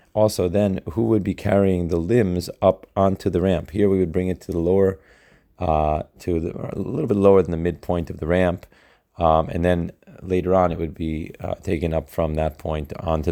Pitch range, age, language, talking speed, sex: 85-95 Hz, 30-49, Hebrew, 215 wpm, male